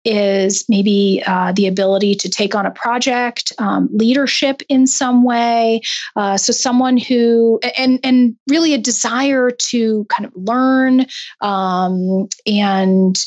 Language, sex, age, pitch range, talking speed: English, female, 30-49, 195-235 Hz, 135 wpm